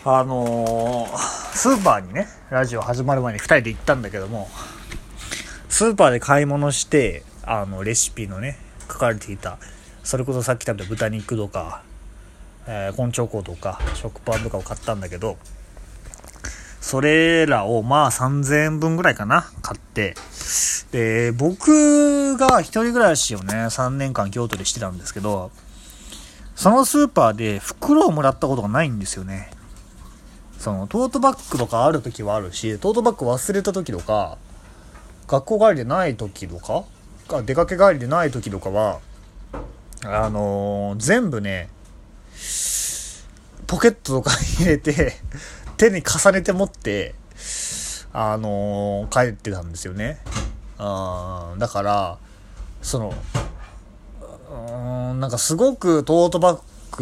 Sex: male